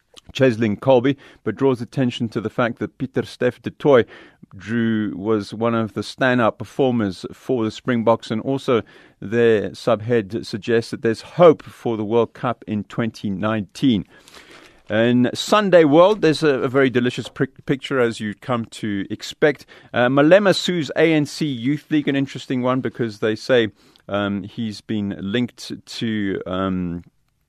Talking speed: 155 wpm